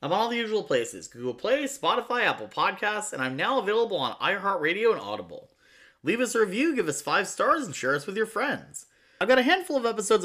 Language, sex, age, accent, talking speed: English, male, 20-39, American, 230 wpm